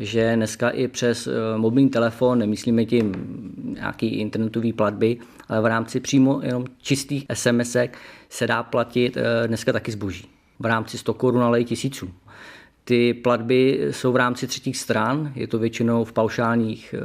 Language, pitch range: Czech, 115-130 Hz